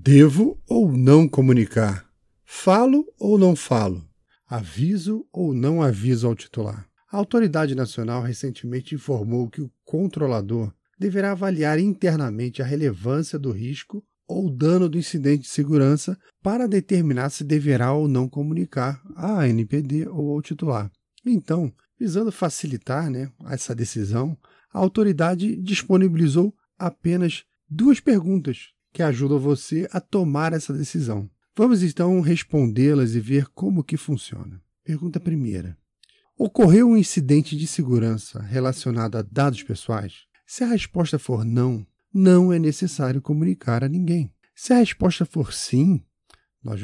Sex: male